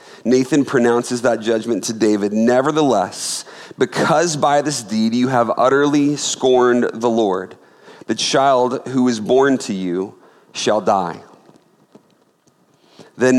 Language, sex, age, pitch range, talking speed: English, male, 40-59, 105-130 Hz, 120 wpm